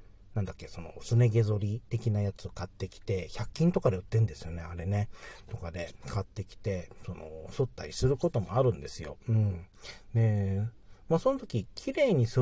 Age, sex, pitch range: 40-59, male, 95-125 Hz